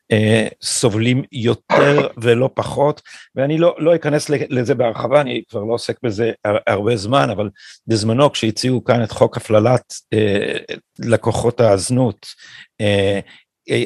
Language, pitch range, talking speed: Hebrew, 110-140 Hz, 140 wpm